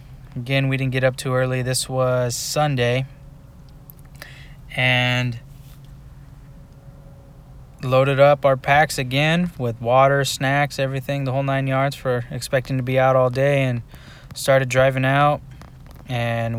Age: 20-39